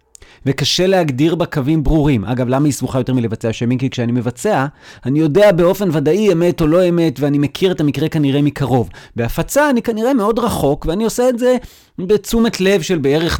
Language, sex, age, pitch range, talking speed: Hebrew, male, 30-49, 130-195 Hz, 190 wpm